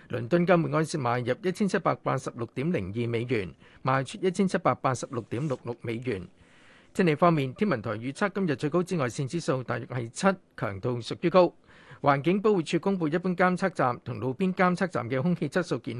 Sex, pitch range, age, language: male, 130-175 Hz, 50-69, Chinese